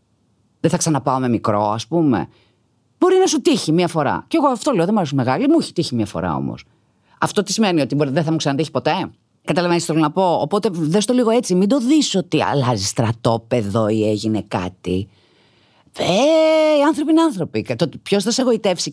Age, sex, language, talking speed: 30-49, female, Greek, 205 wpm